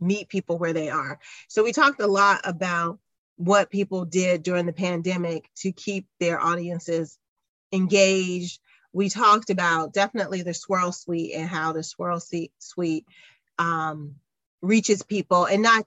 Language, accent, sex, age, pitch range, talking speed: English, American, female, 30-49, 165-190 Hz, 150 wpm